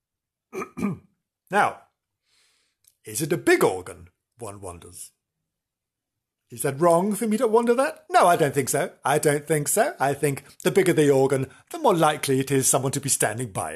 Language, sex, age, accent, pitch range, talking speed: English, male, 50-69, British, 115-150 Hz, 180 wpm